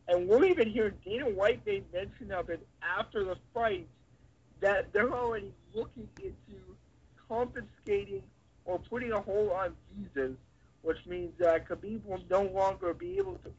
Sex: male